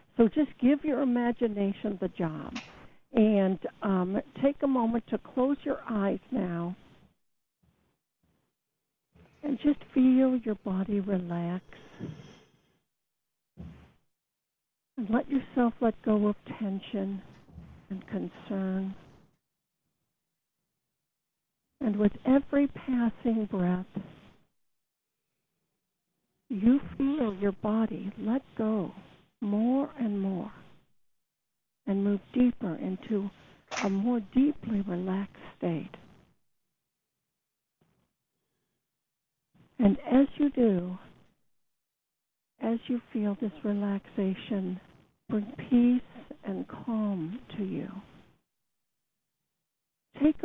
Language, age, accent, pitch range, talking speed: English, 60-79, American, 195-250 Hz, 85 wpm